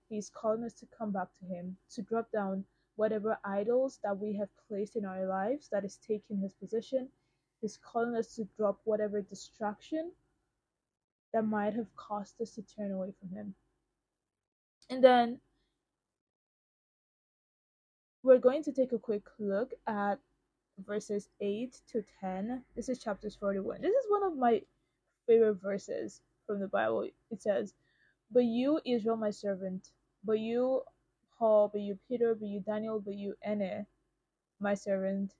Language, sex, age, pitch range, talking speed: English, female, 20-39, 195-230 Hz, 155 wpm